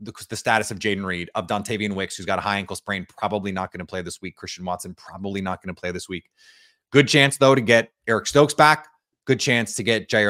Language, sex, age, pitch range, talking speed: English, male, 30-49, 100-130 Hz, 250 wpm